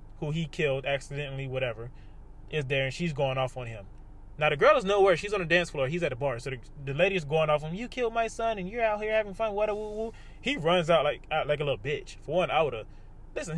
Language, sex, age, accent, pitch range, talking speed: English, male, 20-39, American, 140-215 Hz, 285 wpm